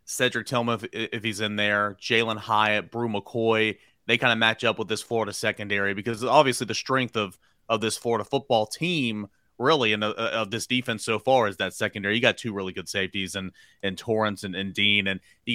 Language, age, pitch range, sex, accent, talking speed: English, 30-49, 105-120 Hz, male, American, 205 wpm